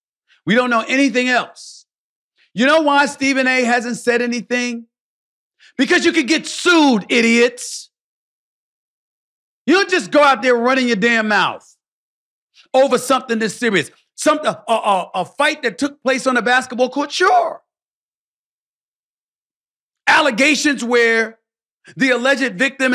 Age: 40-59